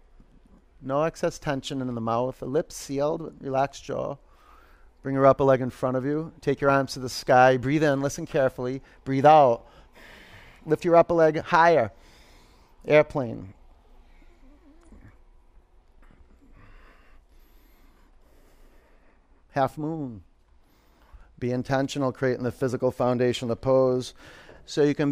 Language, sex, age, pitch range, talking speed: English, male, 40-59, 120-150 Hz, 120 wpm